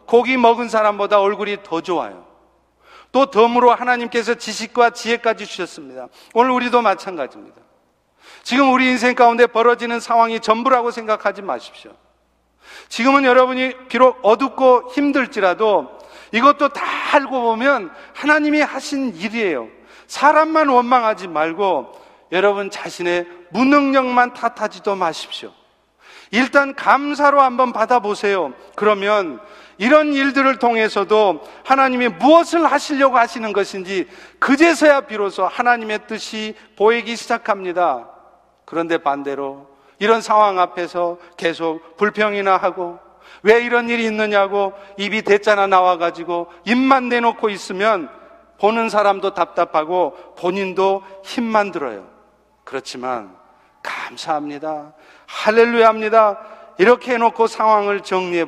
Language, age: Korean, 40-59